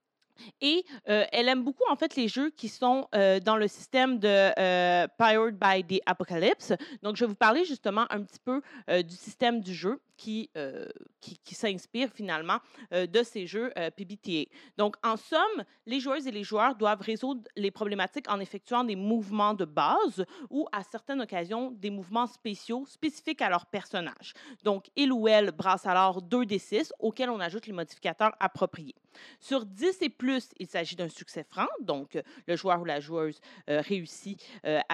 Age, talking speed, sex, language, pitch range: 30-49, 190 wpm, female, French, 185-255 Hz